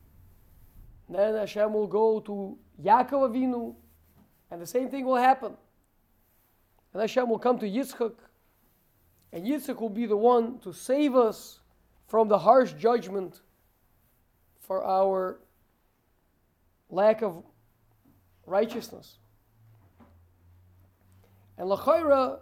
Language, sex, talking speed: English, male, 105 wpm